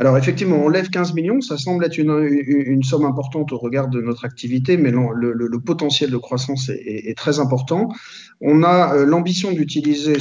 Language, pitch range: French, 130-165 Hz